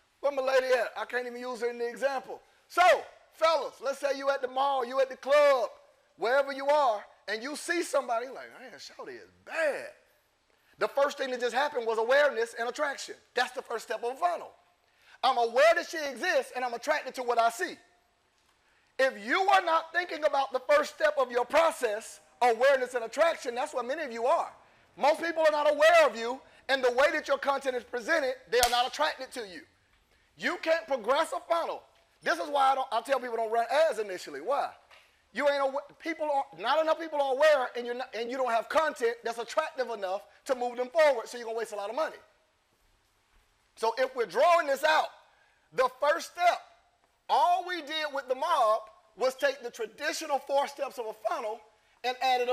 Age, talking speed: 40-59, 210 wpm